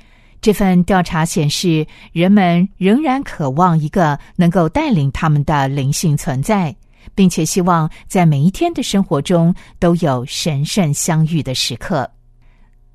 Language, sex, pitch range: Chinese, female, 145-190 Hz